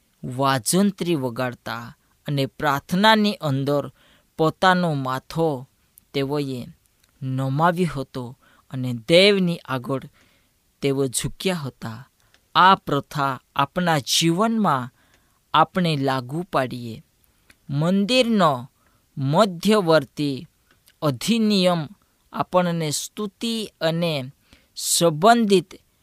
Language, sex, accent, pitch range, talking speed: Gujarati, female, native, 135-185 Hz, 70 wpm